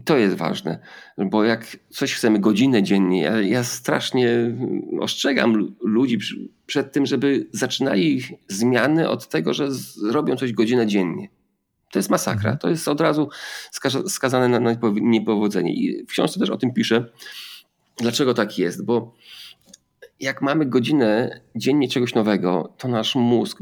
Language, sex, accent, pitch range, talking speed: Polish, male, native, 100-120 Hz, 140 wpm